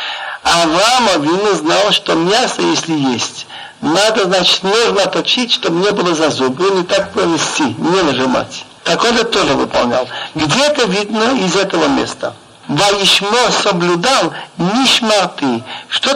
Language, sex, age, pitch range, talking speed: Russian, male, 60-79, 190-240 Hz, 135 wpm